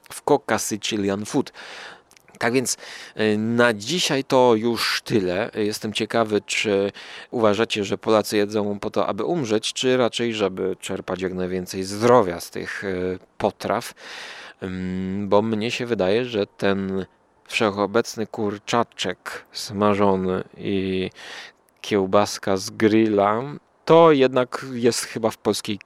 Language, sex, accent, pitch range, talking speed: Polish, male, native, 100-120 Hz, 120 wpm